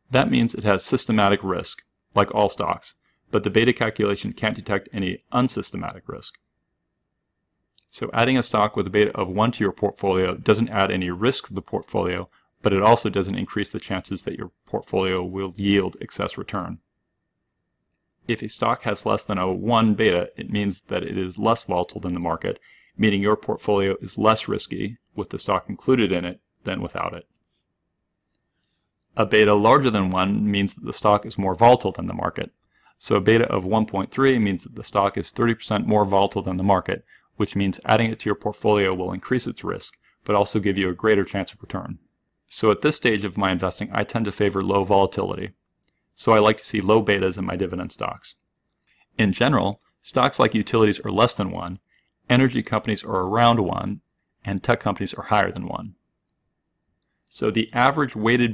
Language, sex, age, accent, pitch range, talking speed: English, male, 40-59, American, 95-110 Hz, 190 wpm